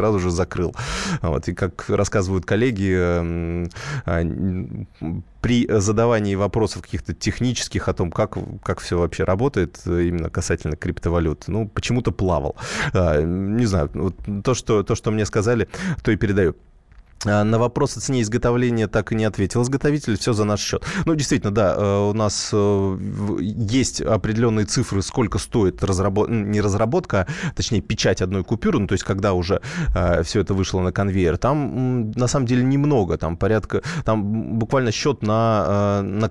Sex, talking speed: male, 155 wpm